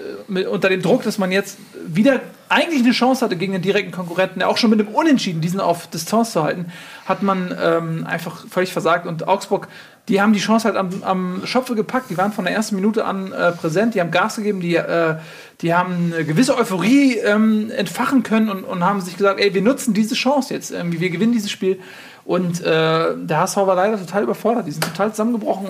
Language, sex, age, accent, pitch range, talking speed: German, male, 40-59, German, 180-225 Hz, 215 wpm